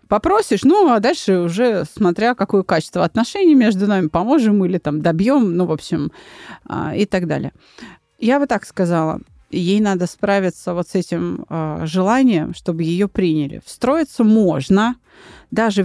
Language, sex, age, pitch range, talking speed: Russian, female, 30-49, 175-235 Hz, 145 wpm